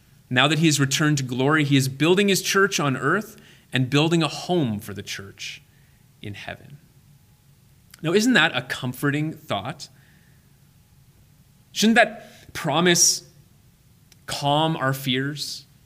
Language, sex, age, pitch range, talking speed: English, male, 30-49, 120-145 Hz, 130 wpm